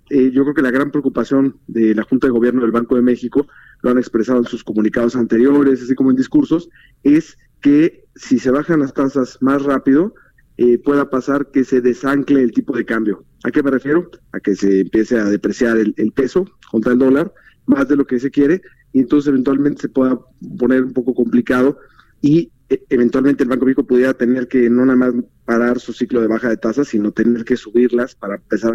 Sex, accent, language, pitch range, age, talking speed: male, Mexican, Spanish, 120-150 Hz, 40-59, 215 wpm